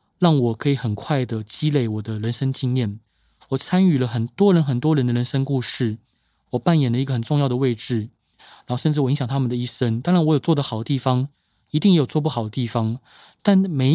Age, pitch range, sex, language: 20-39, 115-145 Hz, male, Chinese